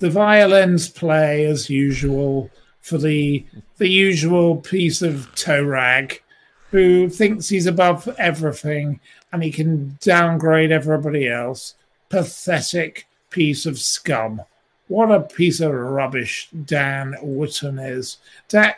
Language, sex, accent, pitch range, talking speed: English, male, British, 140-175 Hz, 120 wpm